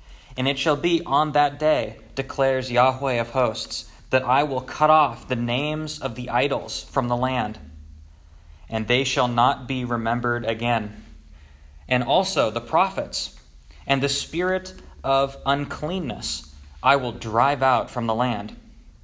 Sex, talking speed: male, 150 wpm